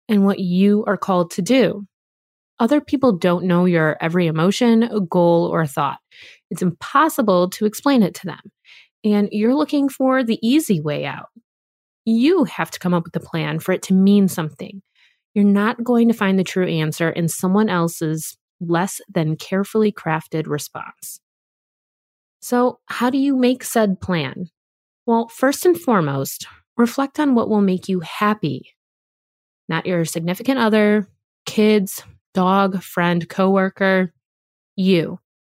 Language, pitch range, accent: English, 170-230 Hz, American